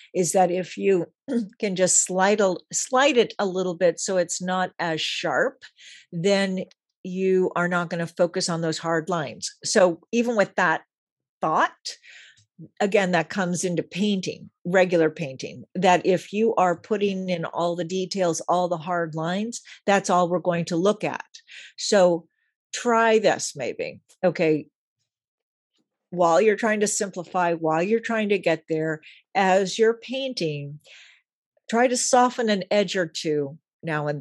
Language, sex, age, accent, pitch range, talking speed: English, female, 50-69, American, 170-205 Hz, 155 wpm